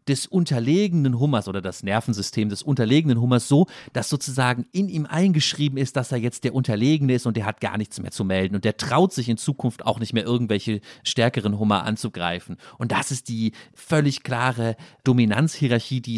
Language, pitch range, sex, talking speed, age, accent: German, 110-150 Hz, male, 190 wpm, 40-59, German